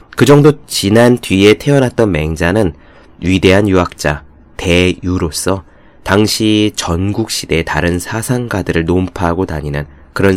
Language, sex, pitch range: Korean, male, 80-120 Hz